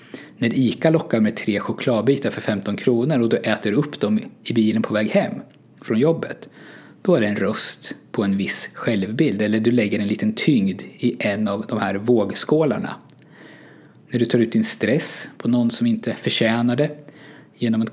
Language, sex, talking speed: Swedish, male, 185 wpm